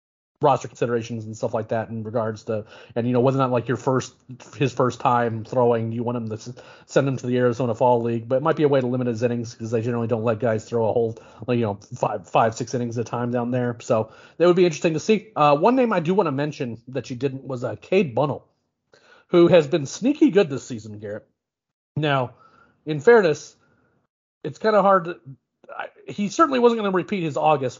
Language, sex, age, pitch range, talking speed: English, male, 40-59, 125-160 Hz, 240 wpm